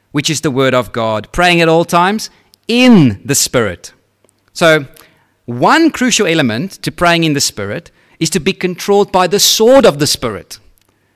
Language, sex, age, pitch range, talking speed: English, male, 30-49, 125-180 Hz, 170 wpm